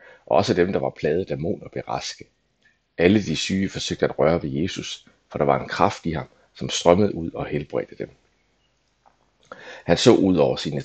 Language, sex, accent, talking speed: Danish, male, native, 195 wpm